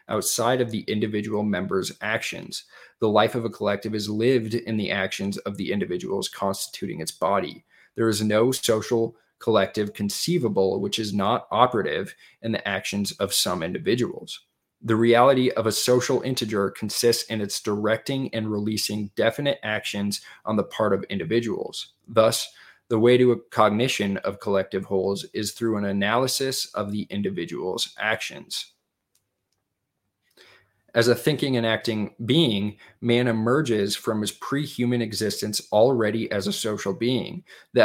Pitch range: 105-120 Hz